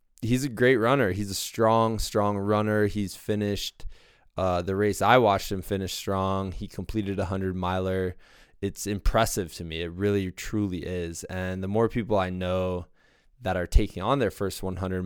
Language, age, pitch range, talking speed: English, 20-39, 90-105 Hz, 180 wpm